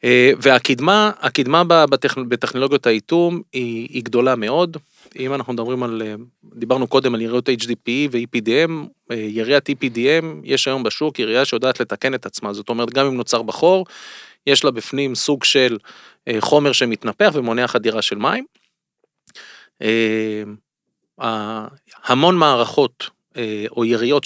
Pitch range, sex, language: 120-175 Hz, male, Hebrew